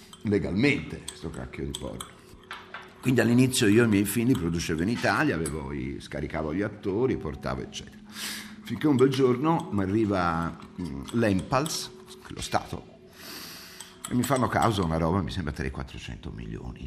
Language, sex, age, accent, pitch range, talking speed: Italian, male, 50-69, native, 75-110 Hz, 145 wpm